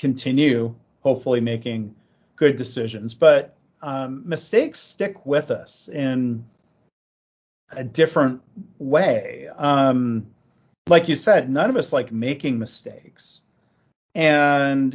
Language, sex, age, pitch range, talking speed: English, male, 40-59, 125-155 Hz, 105 wpm